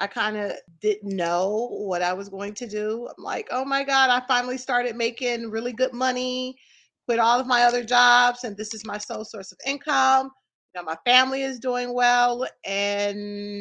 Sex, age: female, 30-49